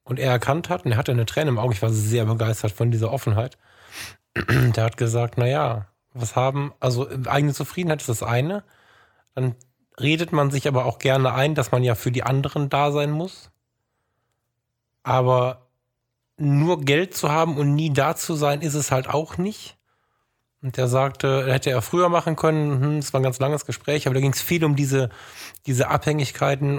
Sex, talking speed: male, 190 wpm